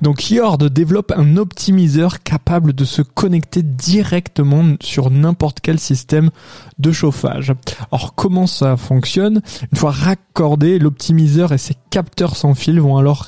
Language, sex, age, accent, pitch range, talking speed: French, male, 20-39, French, 130-165 Hz, 140 wpm